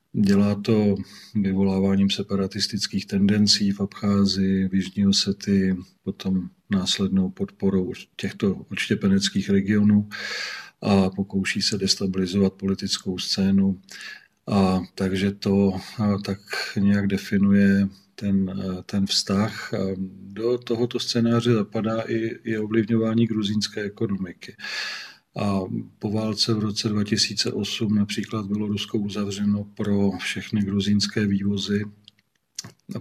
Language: Czech